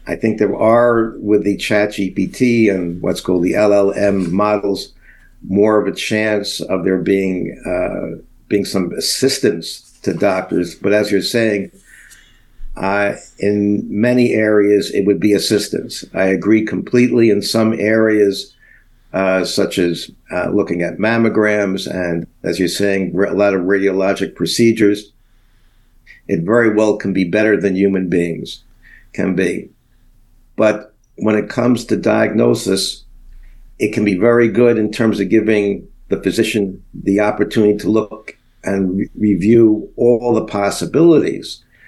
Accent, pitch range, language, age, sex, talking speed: American, 100-110 Hz, English, 60-79, male, 140 wpm